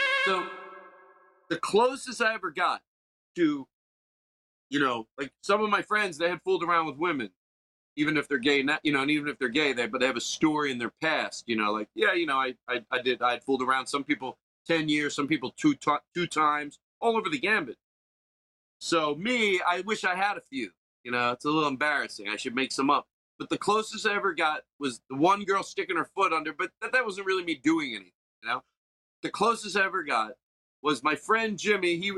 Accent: American